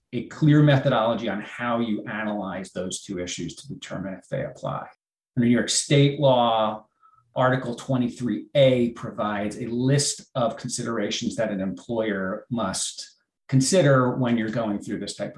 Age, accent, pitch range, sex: 40-59, American, 115-135 Hz, male